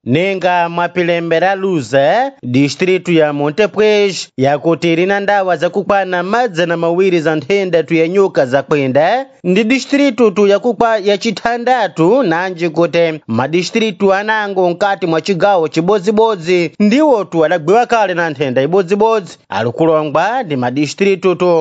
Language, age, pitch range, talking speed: Portuguese, 30-49, 165-210 Hz, 125 wpm